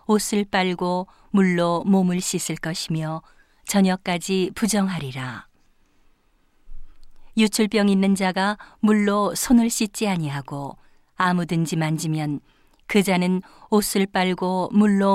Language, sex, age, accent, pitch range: Korean, female, 40-59, native, 170-210 Hz